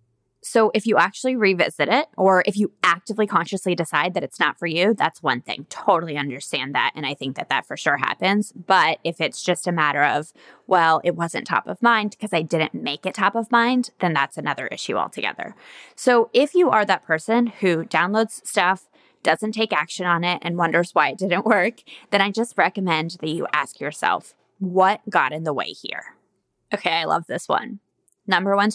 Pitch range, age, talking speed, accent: 165-220 Hz, 20-39, 205 wpm, American